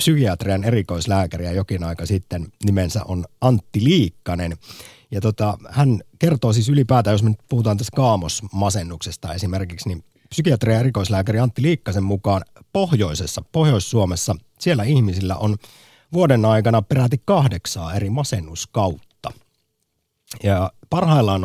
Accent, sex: native, male